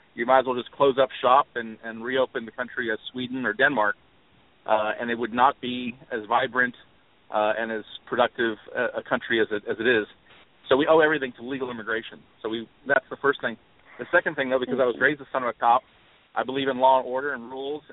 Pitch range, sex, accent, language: 120-140 Hz, male, American, English